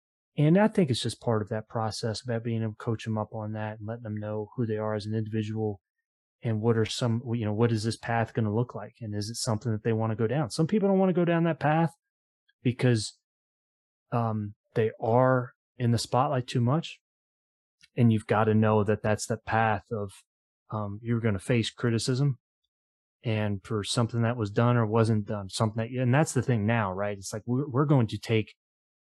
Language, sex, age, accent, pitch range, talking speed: English, male, 30-49, American, 110-140 Hz, 220 wpm